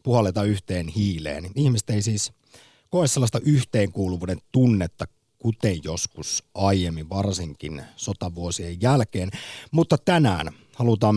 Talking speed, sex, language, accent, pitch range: 100 wpm, male, Finnish, native, 95-125 Hz